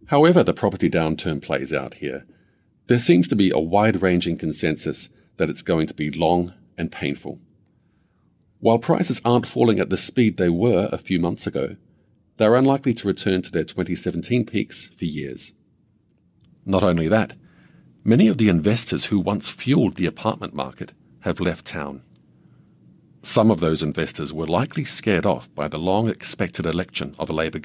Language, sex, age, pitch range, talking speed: English, male, 50-69, 85-115 Hz, 165 wpm